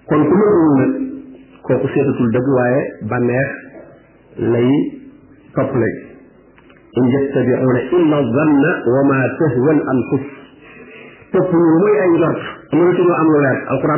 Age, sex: 50-69, male